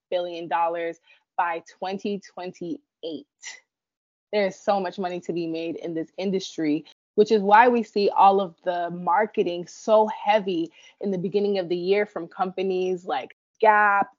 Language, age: English, 20-39